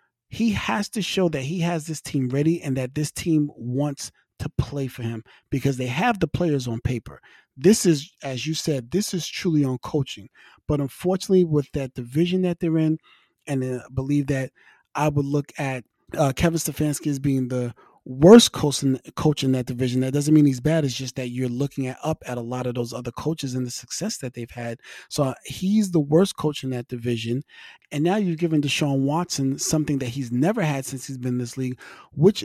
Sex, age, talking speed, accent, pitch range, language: male, 30-49, 210 wpm, American, 130-155 Hz, English